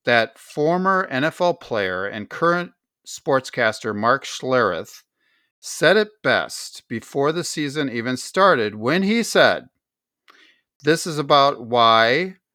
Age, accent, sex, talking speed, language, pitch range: 50-69, American, male, 115 wpm, English, 120-160 Hz